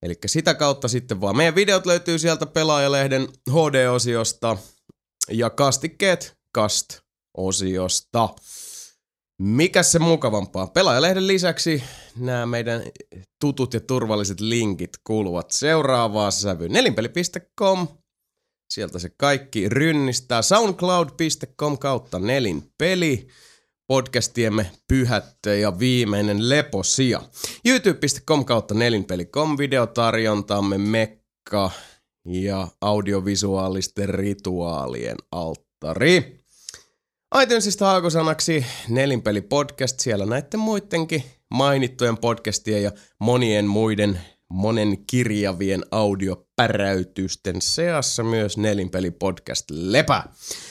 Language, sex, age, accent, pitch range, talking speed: Finnish, male, 30-49, native, 100-150 Hz, 80 wpm